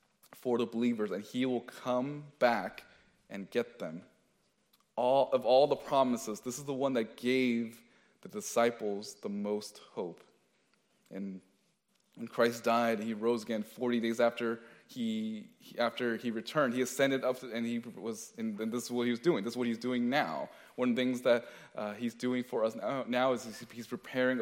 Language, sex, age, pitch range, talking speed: English, male, 20-39, 115-130 Hz, 185 wpm